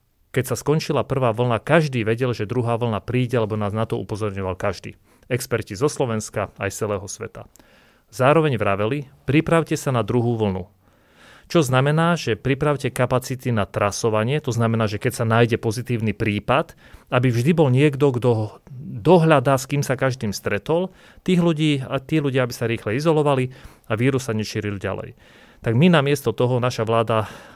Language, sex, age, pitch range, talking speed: Slovak, male, 40-59, 115-145 Hz, 170 wpm